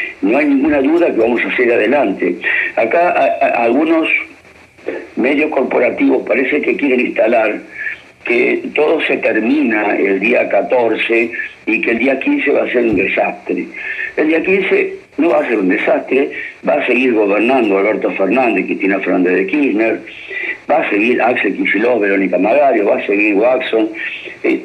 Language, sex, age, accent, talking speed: Spanish, male, 60-79, Argentinian, 165 wpm